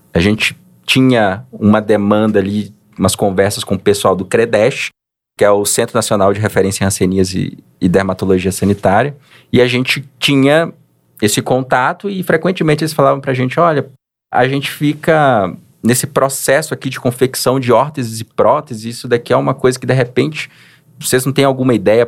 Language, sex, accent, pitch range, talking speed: Portuguese, male, Brazilian, 100-140 Hz, 175 wpm